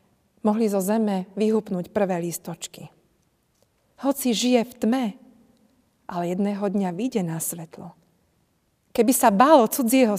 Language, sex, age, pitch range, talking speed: Slovak, female, 40-59, 170-205 Hz, 125 wpm